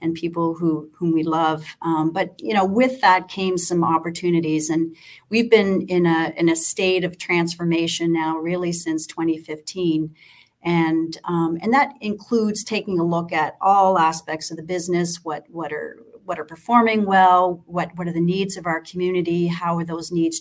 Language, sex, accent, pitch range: English, female, American, 165-180 Hz